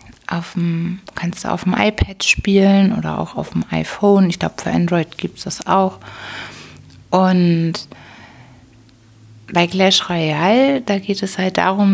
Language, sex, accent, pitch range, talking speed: German, female, German, 170-200 Hz, 140 wpm